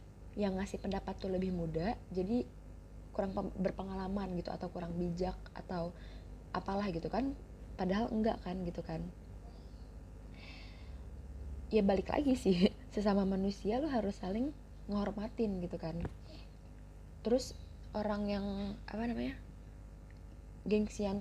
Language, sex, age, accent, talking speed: Indonesian, female, 20-39, native, 115 wpm